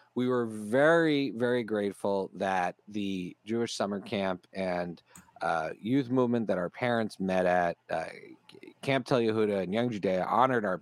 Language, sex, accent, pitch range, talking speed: English, male, American, 95-140 Hz, 155 wpm